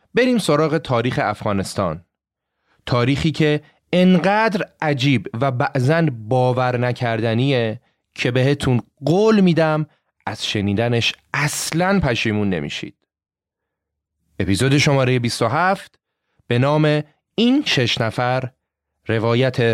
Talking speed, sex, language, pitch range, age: 90 wpm, male, Persian, 115-165 Hz, 30-49